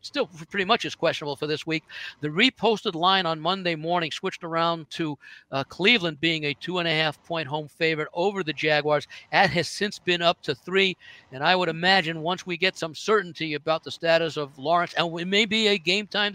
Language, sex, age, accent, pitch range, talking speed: English, male, 60-79, American, 150-190 Hz, 215 wpm